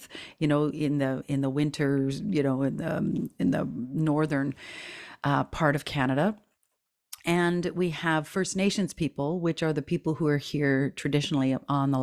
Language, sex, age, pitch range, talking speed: English, female, 40-59, 145-180 Hz, 175 wpm